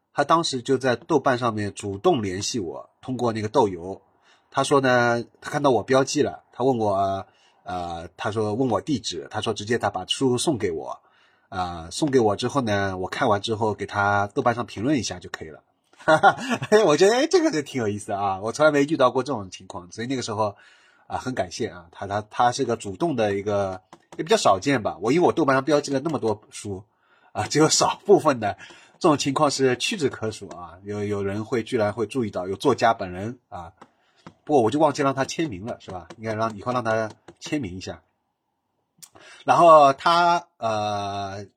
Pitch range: 100-135 Hz